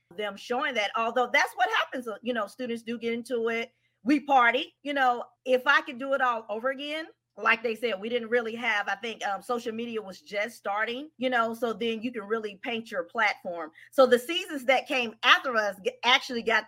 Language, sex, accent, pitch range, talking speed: English, female, American, 205-265 Hz, 215 wpm